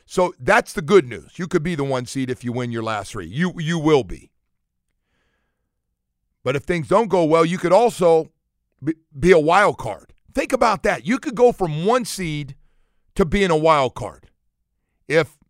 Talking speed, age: 190 wpm, 50-69